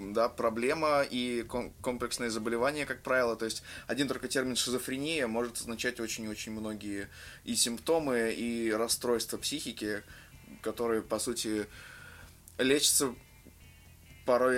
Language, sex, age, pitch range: Russian, male, 20-39, 115-140 Hz